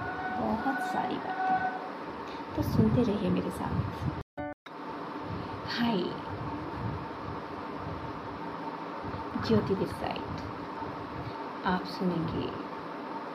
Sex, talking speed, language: female, 60 wpm, Hindi